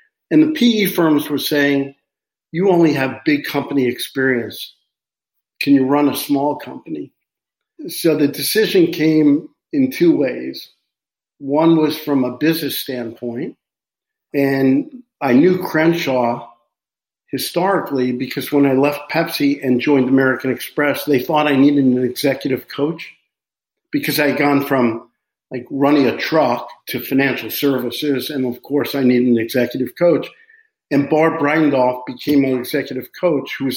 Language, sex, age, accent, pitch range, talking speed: English, male, 50-69, American, 125-150 Hz, 145 wpm